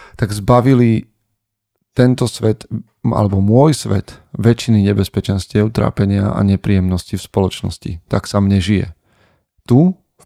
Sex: male